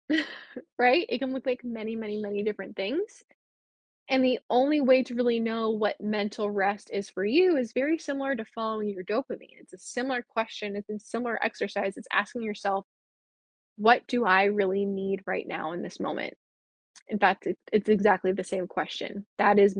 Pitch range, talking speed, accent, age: 205-255 Hz, 185 wpm, American, 20-39